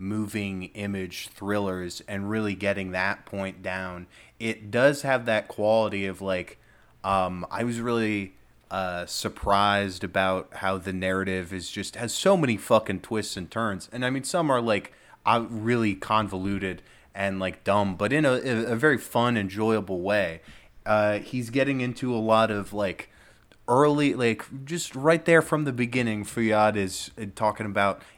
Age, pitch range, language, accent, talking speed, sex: 20-39, 95-115 Hz, English, American, 160 wpm, male